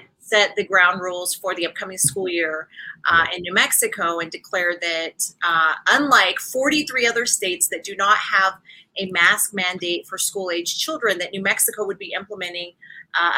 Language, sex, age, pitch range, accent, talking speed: English, female, 30-49, 175-215 Hz, American, 170 wpm